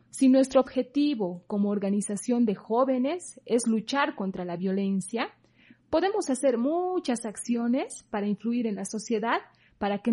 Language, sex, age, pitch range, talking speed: Spanish, female, 30-49, 190-245 Hz, 135 wpm